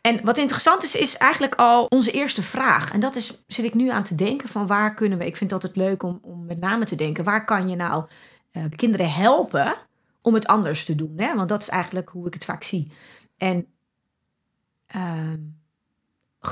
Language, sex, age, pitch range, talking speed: Dutch, female, 30-49, 185-245 Hz, 210 wpm